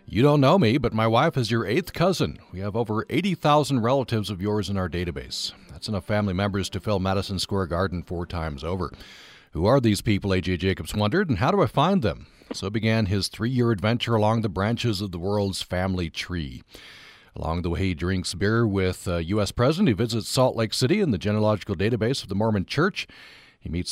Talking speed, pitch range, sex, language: 210 wpm, 95-115 Hz, male, English